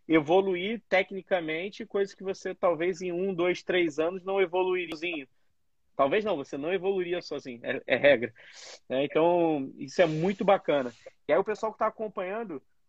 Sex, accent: male, Brazilian